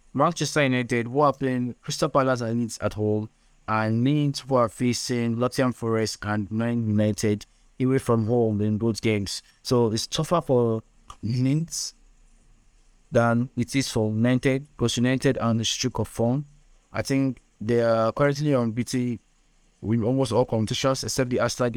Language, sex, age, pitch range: English, male, 30-49, 110-130 Hz